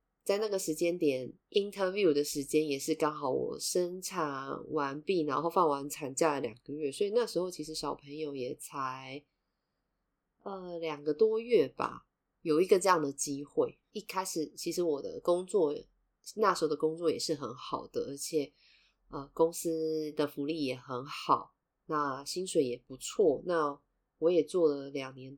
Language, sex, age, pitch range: Chinese, female, 20-39, 140-170 Hz